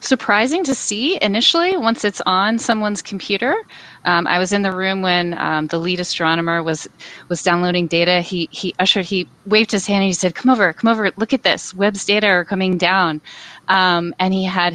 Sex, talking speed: female, 205 wpm